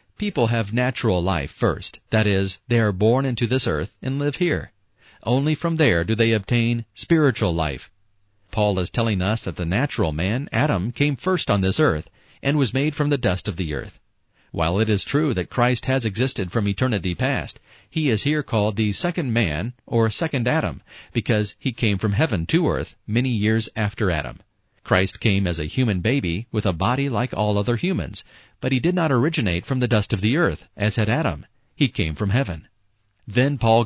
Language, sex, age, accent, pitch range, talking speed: English, male, 40-59, American, 100-130 Hz, 200 wpm